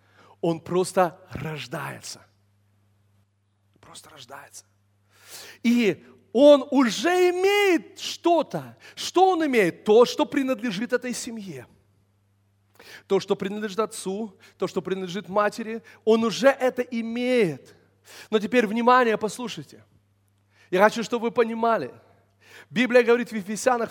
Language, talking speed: Russian, 110 wpm